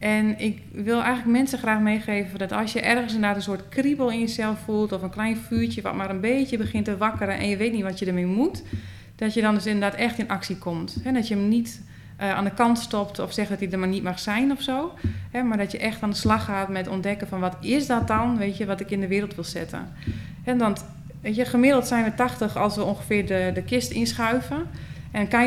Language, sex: Dutch, female